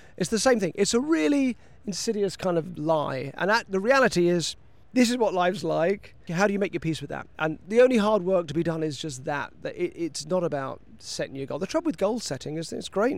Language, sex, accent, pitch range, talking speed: English, male, British, 145-200 Hz, 245 wpm